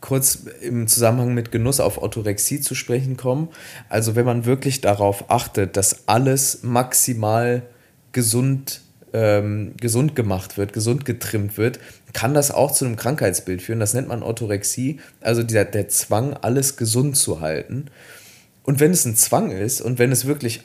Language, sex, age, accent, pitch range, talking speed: German, male, 20-39, German, 110-135 Hz, 160 wpm